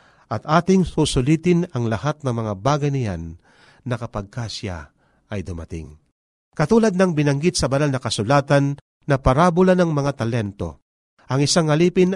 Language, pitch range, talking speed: Filipino, 110-160 Hz, 140 wpm